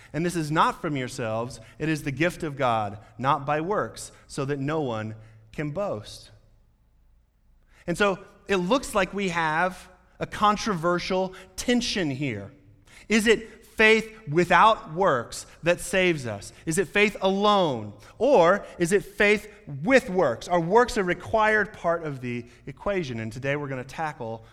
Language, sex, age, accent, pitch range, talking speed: English, male, 30-49, American, 135-195 Hz, 155 wpm